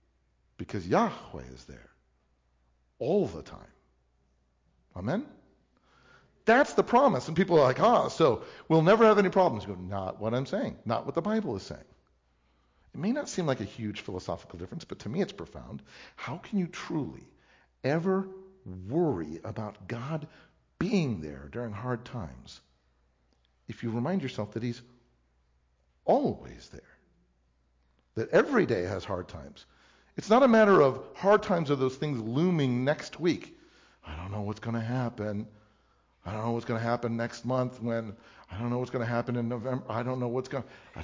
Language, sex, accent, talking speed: English, male, American, 175 wpm